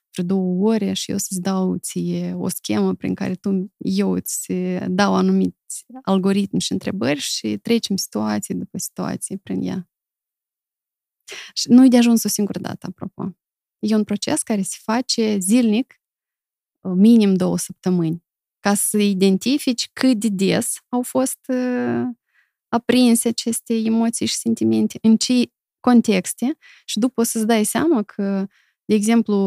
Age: 20-39